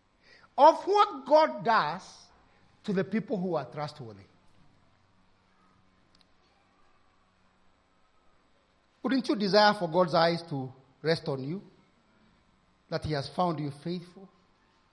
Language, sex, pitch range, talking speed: English, male, 175-275 Hz, 105 wpm